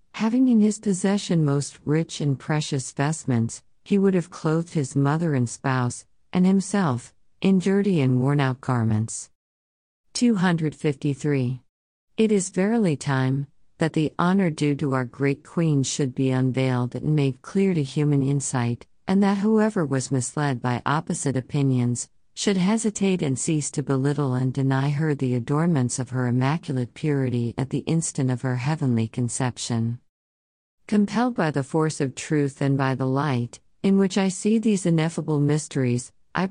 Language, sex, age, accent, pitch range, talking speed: English, female, 50-69, American, 125-170 Hz, 155 wpm